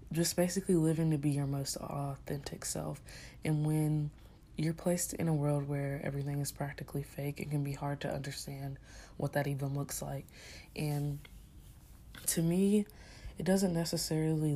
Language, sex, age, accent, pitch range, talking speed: English, female, 20-39, American, 140-155 Hz, 155 wpm